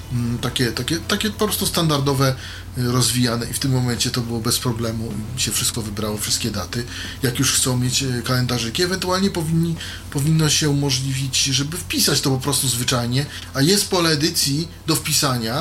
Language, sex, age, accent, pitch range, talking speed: Polish, male, 30-49, native, 115-155 Hz, 165 wpm